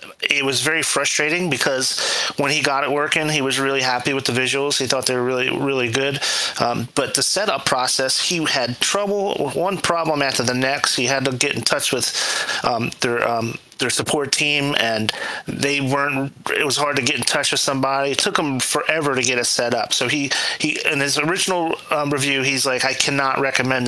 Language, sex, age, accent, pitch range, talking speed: English, male, 30-49, American, 130-145 Hz, 210 wpm